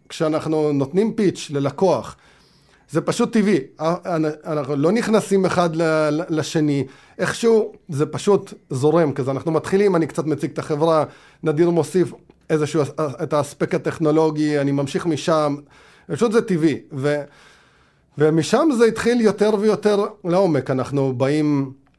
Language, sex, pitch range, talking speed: Hebrew, male, 140-170 Hz, 125 wpm